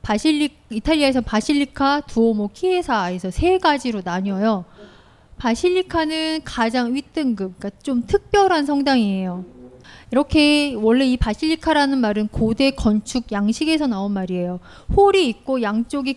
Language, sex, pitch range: Korean, female, 210-275 Hz